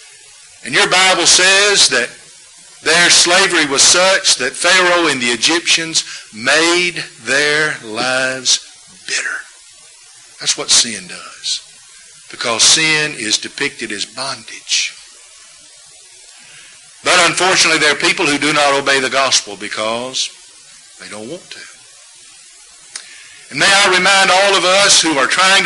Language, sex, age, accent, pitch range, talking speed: English, male, 50-69, American, 145-185 Hz, 125 wpm